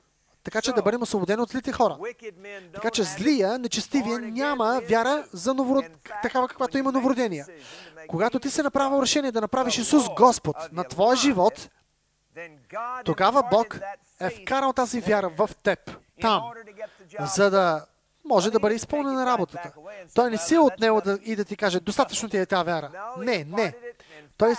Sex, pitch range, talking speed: male, 200-255 Hz, 160 wpm